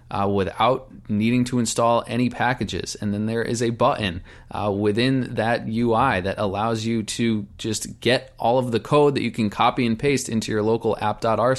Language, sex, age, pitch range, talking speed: English, male, 20-39, 105-120 Hz, 190 wpm